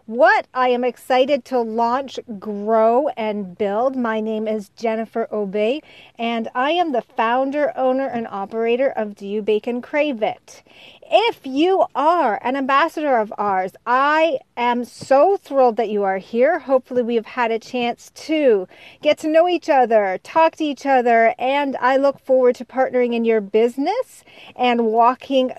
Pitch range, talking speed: 225-285 Hz, 165 wpm